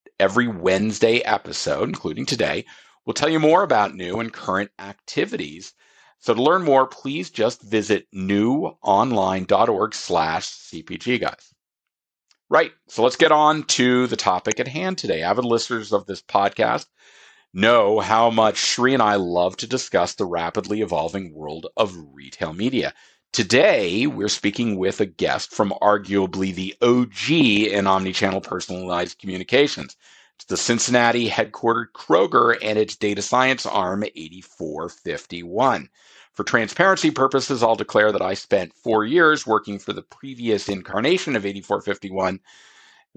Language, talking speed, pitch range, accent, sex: English, 135 wpm, 95-120 Hz, American, male